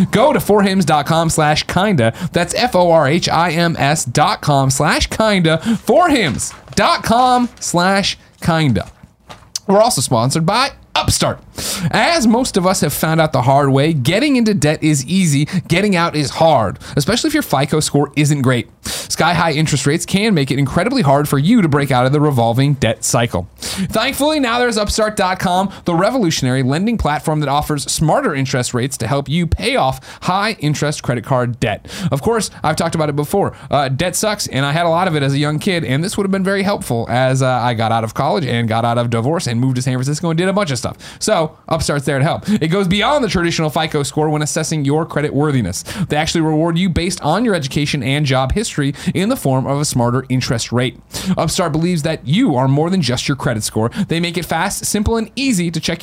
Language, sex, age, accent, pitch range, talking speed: English, male, 30-49, American, 140-190 Hz, 215 wpm